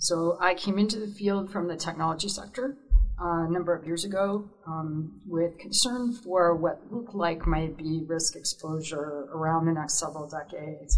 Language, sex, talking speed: English, female, 175 wpm